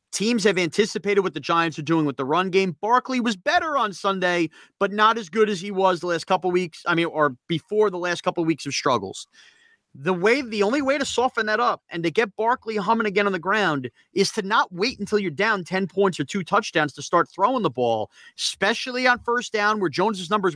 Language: English